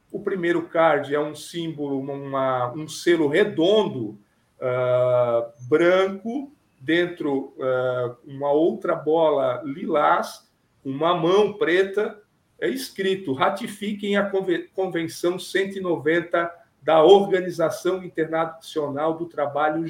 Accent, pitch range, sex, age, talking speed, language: Brazilian, 140-195 Hz, male, 50-69, 85 wpm, Portuguese